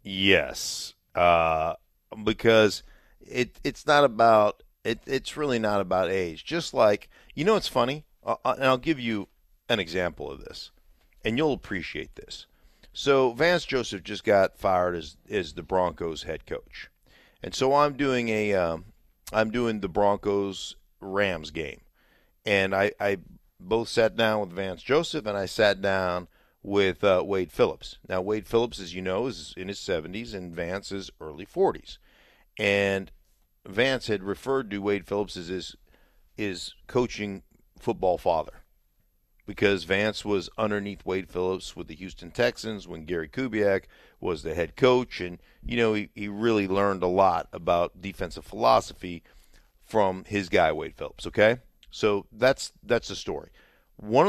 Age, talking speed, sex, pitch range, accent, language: 50-69, 155 wpm, male, 95-115 Hz, American, English